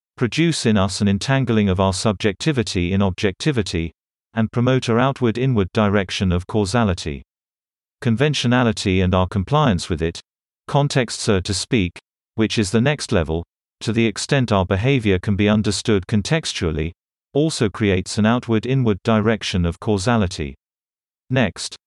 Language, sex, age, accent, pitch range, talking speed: English, male, 40-59, British, 95-120 Hz, 135 wpm